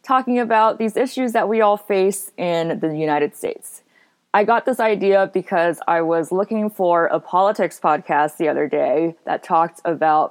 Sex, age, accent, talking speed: female, 20-39, American, 175 wpm